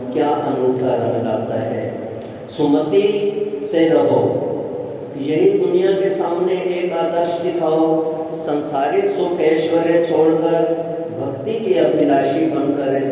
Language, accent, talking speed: Hindi, native, 110 wpm